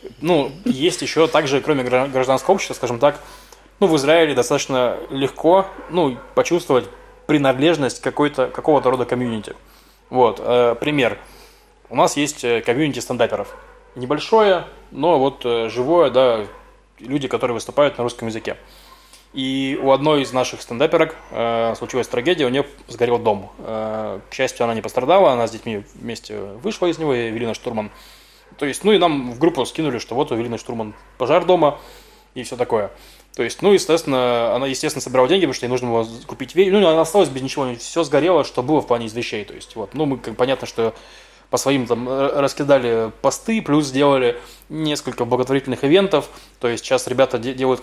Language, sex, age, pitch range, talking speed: Russian, male, 20-39, 120-155 Hz, 170 wpm